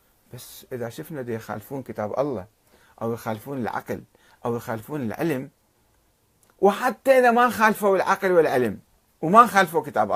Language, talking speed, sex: Arabic, 130 wpm, male